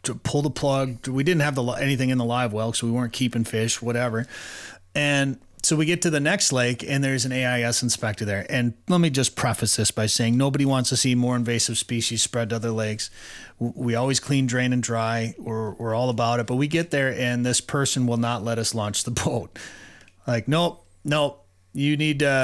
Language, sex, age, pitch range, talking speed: English, male, 30-49, 115-145 Hz, 215 wpm